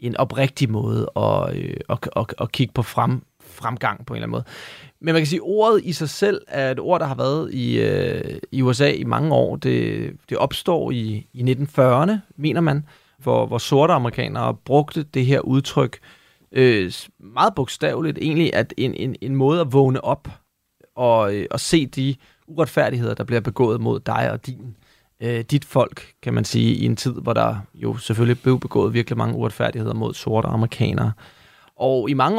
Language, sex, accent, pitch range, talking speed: Danish, male, native, 120-150 Hz, 190 wpm